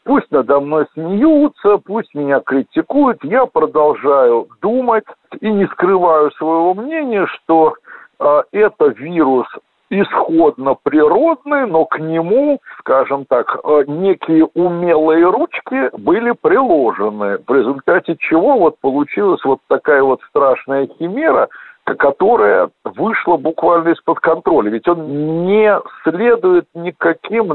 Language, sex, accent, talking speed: Russian, male, native, 115 wpm